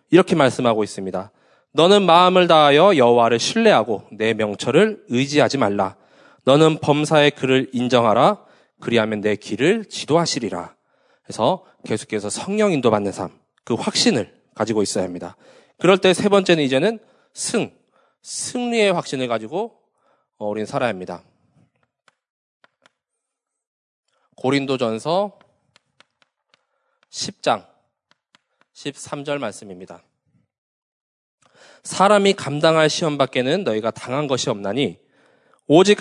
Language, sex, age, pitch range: Korean, male, 20-39, 120-180 Hz